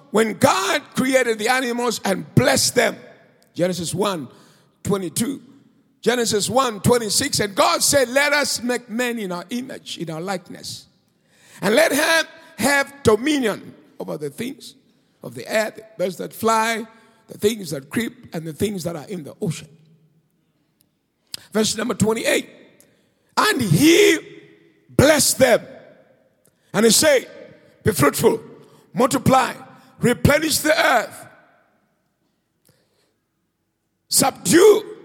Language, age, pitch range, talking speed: English, 50-69, 200-265 Hz, 120 wpm